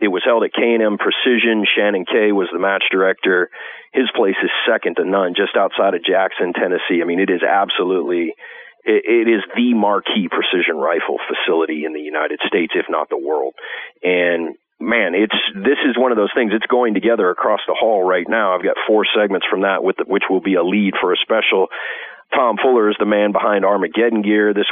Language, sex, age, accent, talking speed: English, male, 40-59, American, 215 wpm